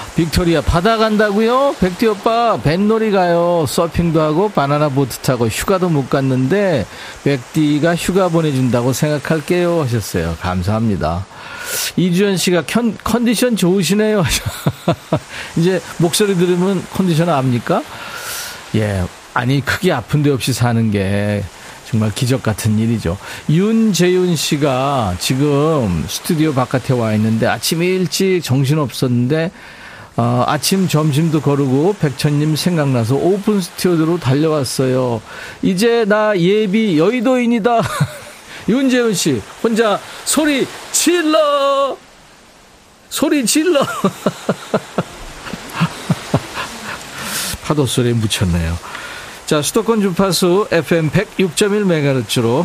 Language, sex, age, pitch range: Korean, male, 40-59, 130-200 Hz